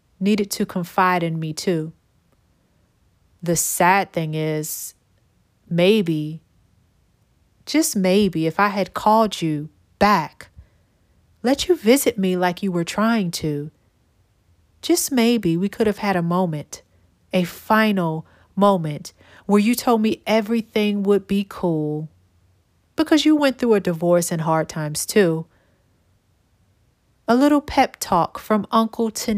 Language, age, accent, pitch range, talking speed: English, 30-49, American, 155-210 Hz, 130 wpm